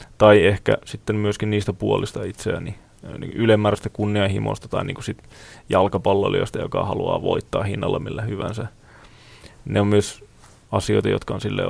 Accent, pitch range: native, 105-115 Hz